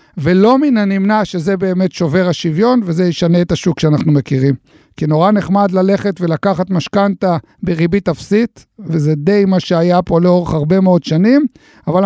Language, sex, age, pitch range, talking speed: Hebrew, male, 50-69, 170-195 Hz, 155 wpm